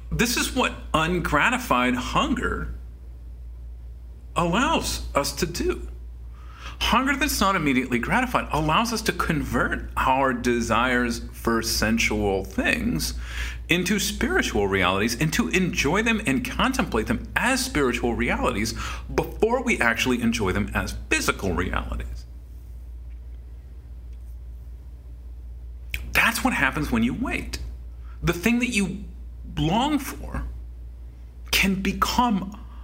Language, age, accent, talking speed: English, 40-59, American, 105 wpm